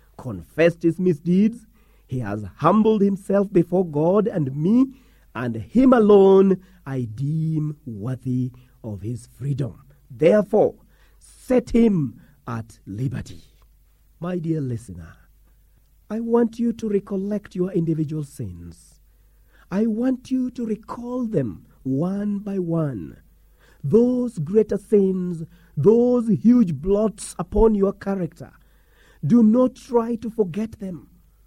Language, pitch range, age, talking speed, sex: English, 145-220 Hz, 40-59, 115 wpm, male